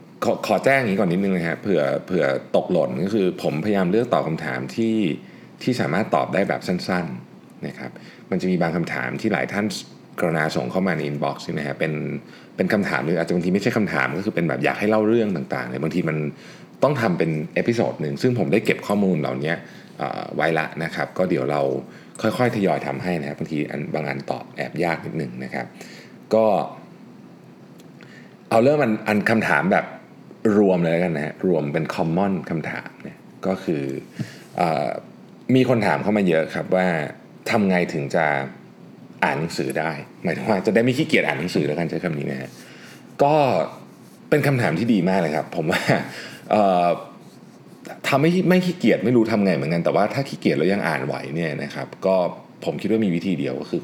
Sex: male